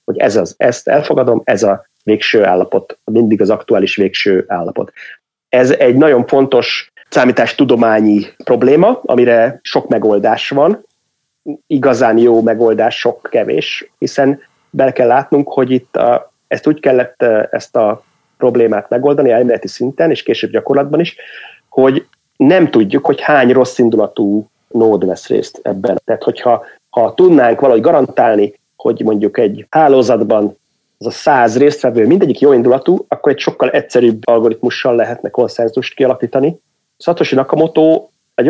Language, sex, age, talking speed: Hungarian, male, 30-49, 135 wpm